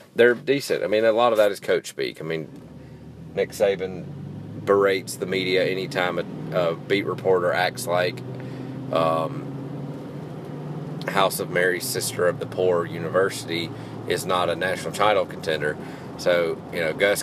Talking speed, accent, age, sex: 155 wpm, American, 30-49, male